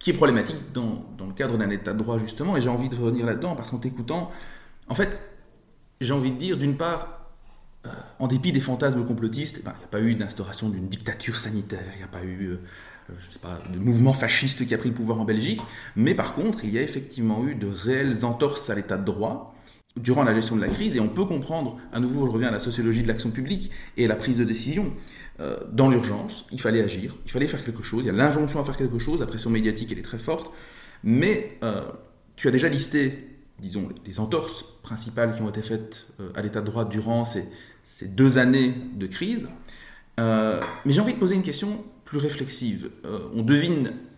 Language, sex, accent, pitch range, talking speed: French, male, French, 110-140 Hz, 230 wpm